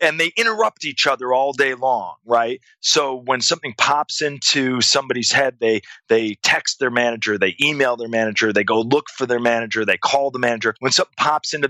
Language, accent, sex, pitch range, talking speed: English, American, male, 125-180 Hz, 200 wpm